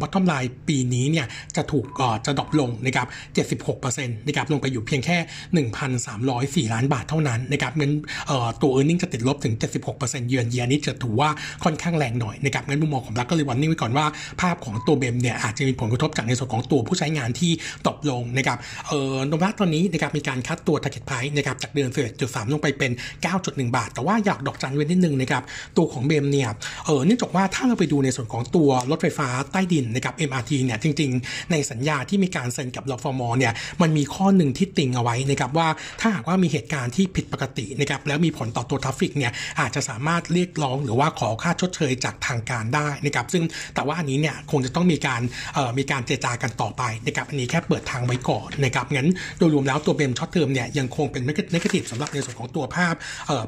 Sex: male